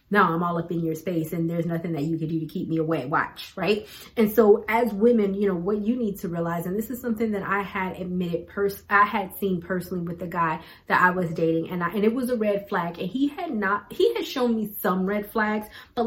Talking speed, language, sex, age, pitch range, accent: 265 wpm, English, female, 30-49, 175-220 Hz, American